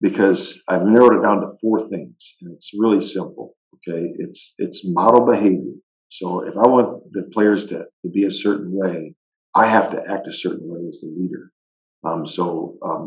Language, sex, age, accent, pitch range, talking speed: English, male, 50-69, American, 90-110 Hz, 195 wpm